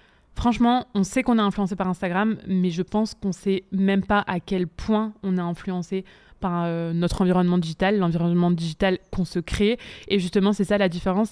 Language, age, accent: French, 20-39, French